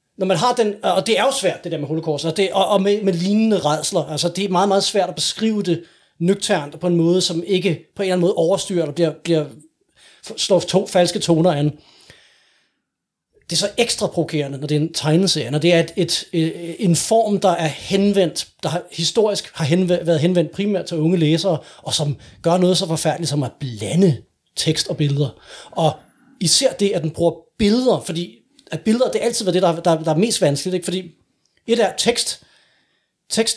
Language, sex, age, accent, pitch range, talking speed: English, male, 30-49, Danish, 160-200 Hz, 215 wpm